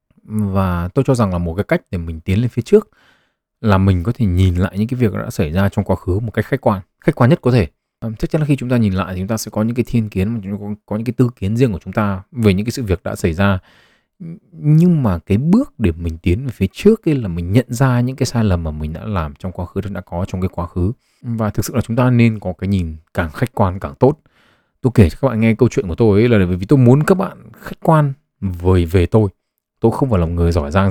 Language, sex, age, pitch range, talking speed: Vietnamese, male, 20-39, 90-120 Hz, 290 wpm